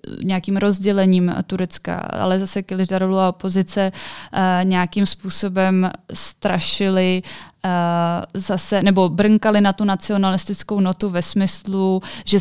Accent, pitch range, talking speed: native, 175-195 Hz, 110 wpm